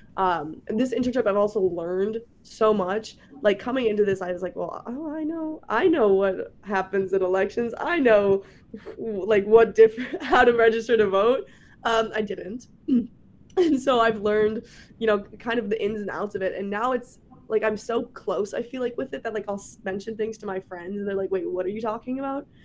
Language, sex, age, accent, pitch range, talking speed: English, female, 20-39, American, 190-230 Hz, 210 wpm